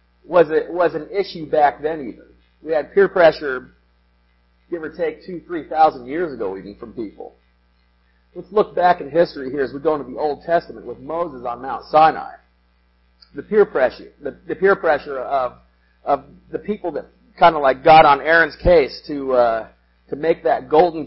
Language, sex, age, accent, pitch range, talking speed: English, male, 40-59, American, 110-180 Hz, 190 wpm